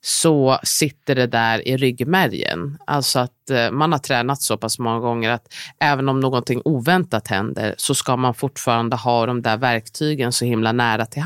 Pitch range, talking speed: 120-160 Hz, 175 wpm